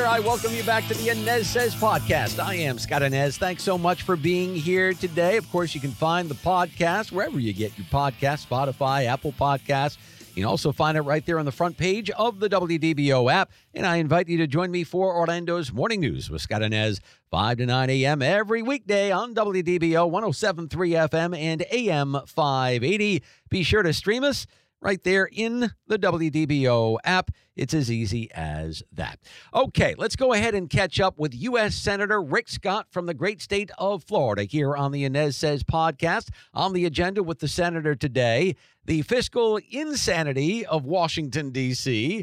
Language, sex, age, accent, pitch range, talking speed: English, male, 50-69, American, 140-195 Hz, 185 wpm